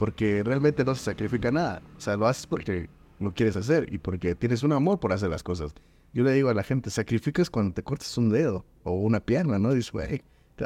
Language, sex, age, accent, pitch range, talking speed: Spanish, male, 20-39, Mexican, 105-140 Hz, 235 wpm